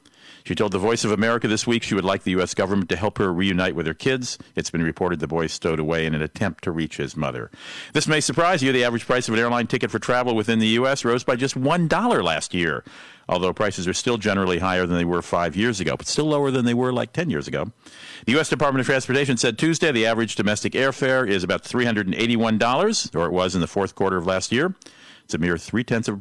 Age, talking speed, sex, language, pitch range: 50-69, 250 wpm, male, English, 95-130 Hz